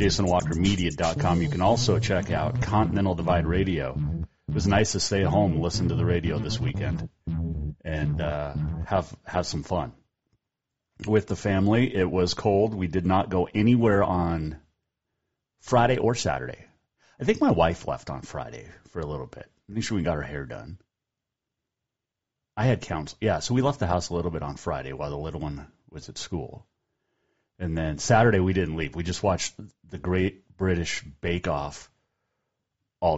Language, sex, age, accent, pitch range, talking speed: English, male, 30-49, American, 80-105 Hz, 180 wpm